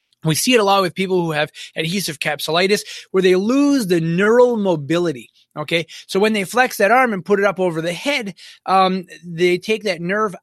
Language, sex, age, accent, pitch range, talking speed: English, male, 20-39, American, 155-195 Hz, 205 wpm